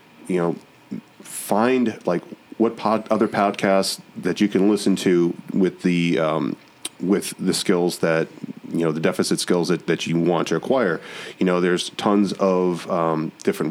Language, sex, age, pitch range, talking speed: English, male, 30-49, 90-105 Hz, 165 wpm